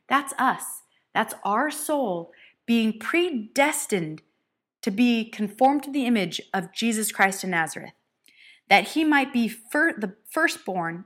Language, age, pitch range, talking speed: English, 30-49, 195-285 Hz, 130 wpm